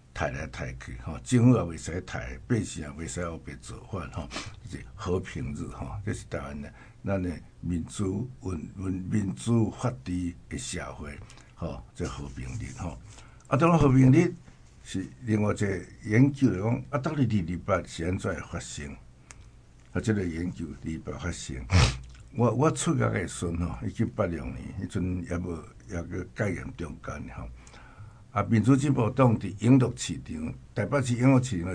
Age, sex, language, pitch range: 60-79, male, Chinese, 85-115 Hz